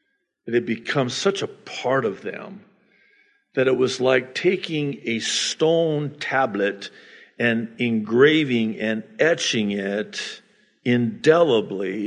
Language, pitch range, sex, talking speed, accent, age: English, 125-200 Hz, male, 110 wpm, American, 60-79